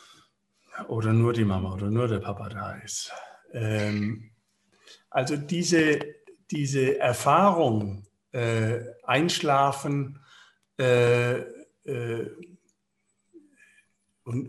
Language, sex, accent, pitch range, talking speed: German, male, German, 120-155 Hz, 85 wpm